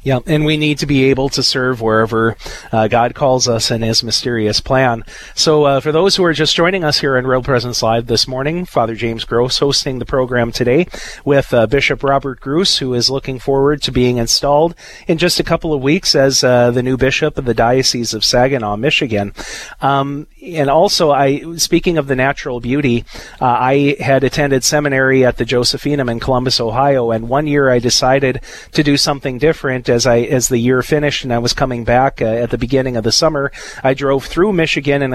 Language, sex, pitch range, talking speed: English, male, 115-140 Hz, 210 wpm